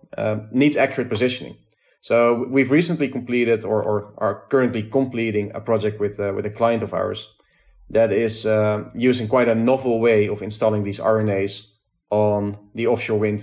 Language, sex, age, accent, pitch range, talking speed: English, male, 30-49, Dutch, 105-125 Hz, 170 wpm